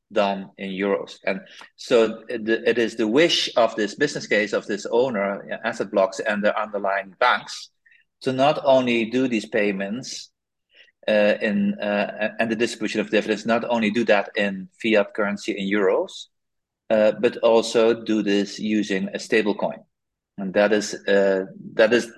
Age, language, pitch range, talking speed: 30-49, English, 100-115 Hz, 165 wpm